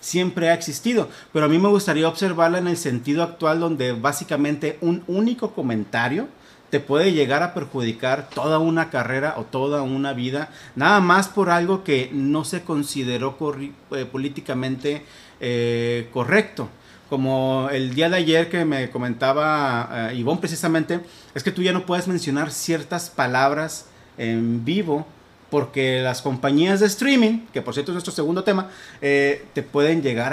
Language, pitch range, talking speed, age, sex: Spanish, 135-190 Hz, 155 wpm, 40-59, male